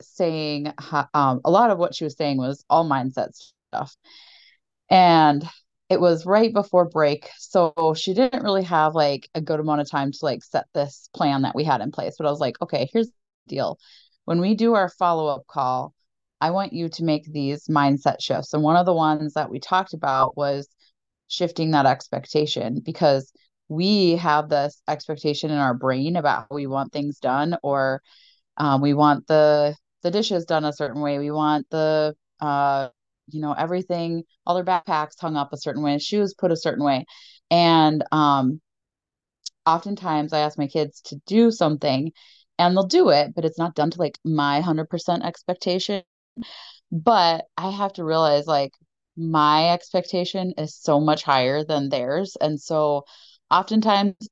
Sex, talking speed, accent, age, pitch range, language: female, 180 wpm, American, 20-39, 145-175 Hz, English